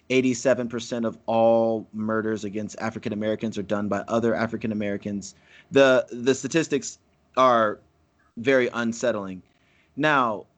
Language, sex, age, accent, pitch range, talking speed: English, male, 30-49, American, 115-135 Hz, 115 wpm